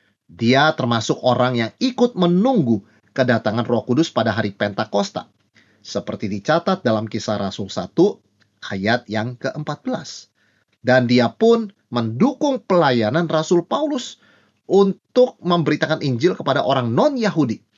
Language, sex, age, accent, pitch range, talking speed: Indonesian, male, 30-49, native, 110-180 Hz, 115 wpm